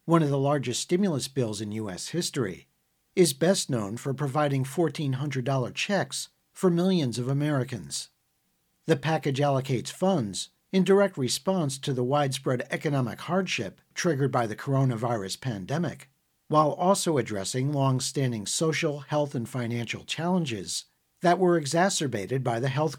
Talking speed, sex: 135 wpm, male